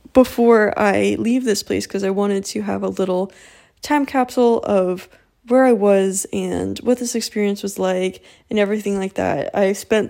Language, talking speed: English, 180 wpm